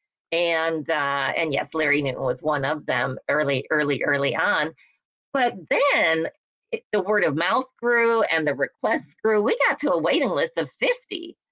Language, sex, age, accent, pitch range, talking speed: English, female, 50-69, American, 155-255 Hz, 175 wpm